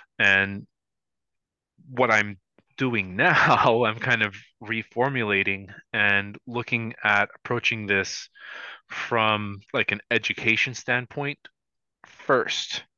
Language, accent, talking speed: English, American, 90 wpm